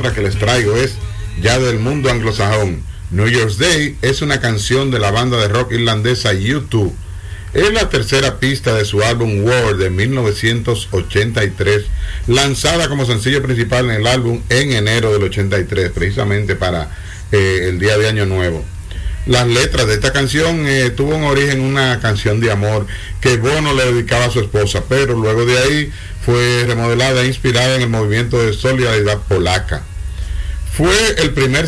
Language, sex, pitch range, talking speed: Spanish, male, 105-135 Hz, 165 wpm